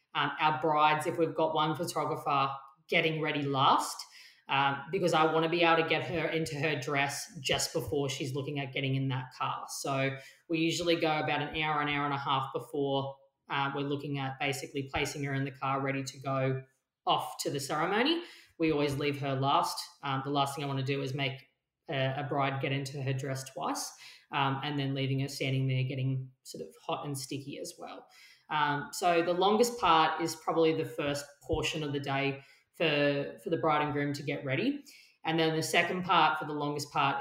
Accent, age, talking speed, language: Australian, 20-39, 215 wpm, English